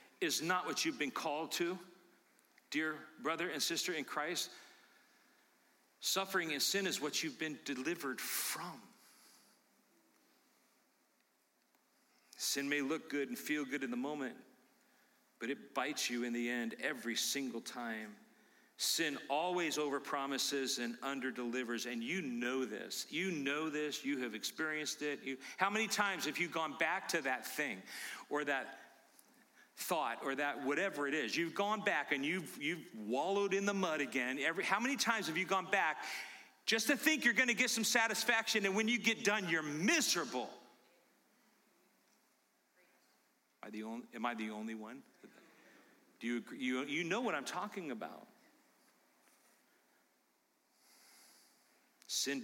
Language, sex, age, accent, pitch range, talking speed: English, male, 40-59, American, 130-195 Hz, 145 wpm